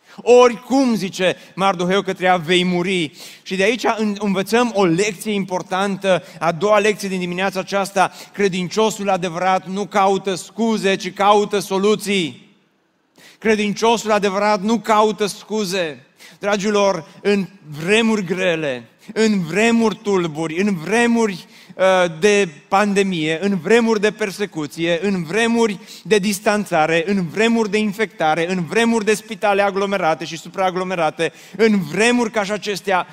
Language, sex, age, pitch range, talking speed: Romanian, male, 30-49, 185-215 Hz, 125 wpm